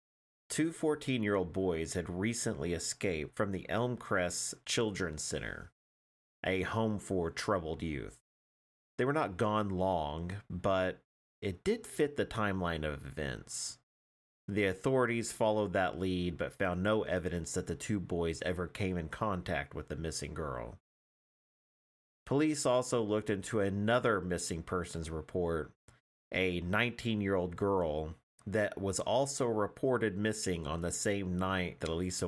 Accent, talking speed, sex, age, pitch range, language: American, 135 wpm, male, 30-49, 80-105 Hz, English